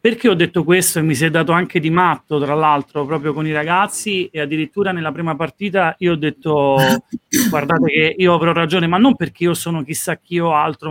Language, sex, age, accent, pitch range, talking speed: Italian, male, 30-49, native, 150-185 Hz, 220 wpm